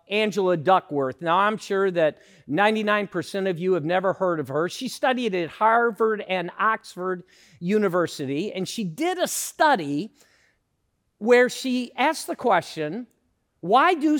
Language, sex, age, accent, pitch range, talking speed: English, male, 50-69, American, 190-260 Hz, 140 wpm